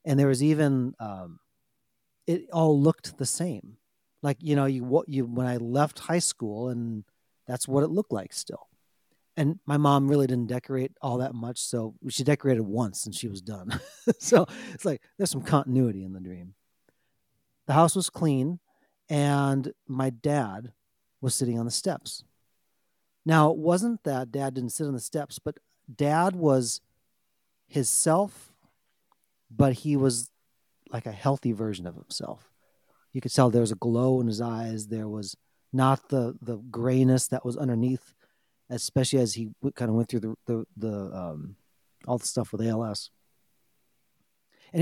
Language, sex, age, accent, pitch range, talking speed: English, male, 40-59, American, 120-150 Hz, 170 wpm